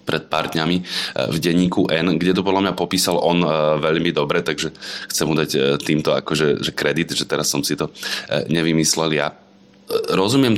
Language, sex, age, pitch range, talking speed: Slovak, male, 20-39, 75-90 Hz, 165 wpm